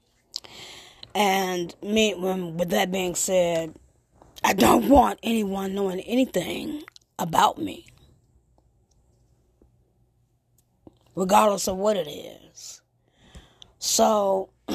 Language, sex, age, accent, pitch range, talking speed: English, female, 20-39, American, 175-220 Hz, 80 wpm